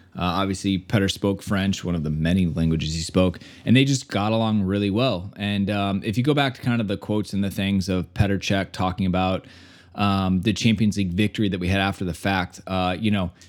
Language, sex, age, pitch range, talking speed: English, male, 20-39, 90-105 Hz, 230 wpm